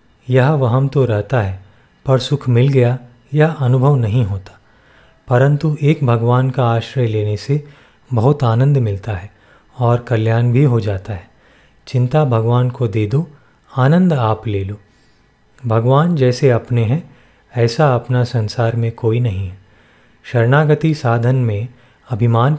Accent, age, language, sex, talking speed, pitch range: native, 30-49, Hindi, male, 145 wpm, 115-135 Hz